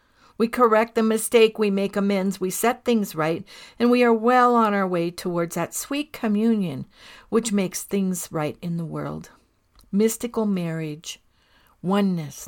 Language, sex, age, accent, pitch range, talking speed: English, female, 60-79, American, 160-210 Hz, 155 wpm